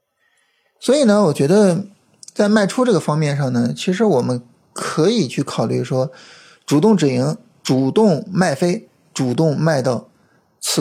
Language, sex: Chinese, male